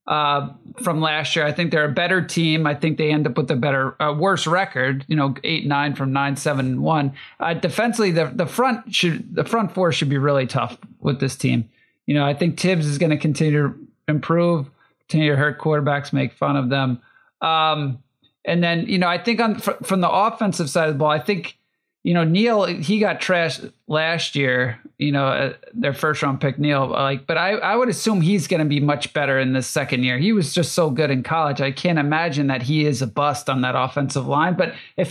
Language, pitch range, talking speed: English, 140-170 Hz, 235 wpm